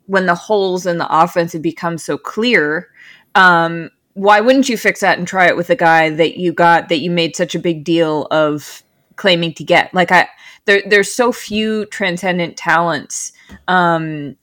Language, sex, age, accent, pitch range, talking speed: English, female, 20-39, American, 165-190 Hz, 185 wpm